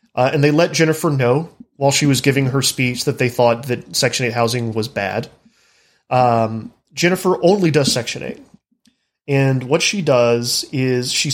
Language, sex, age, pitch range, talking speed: English, male, 30-49, 130-170 Hz, 175 wpm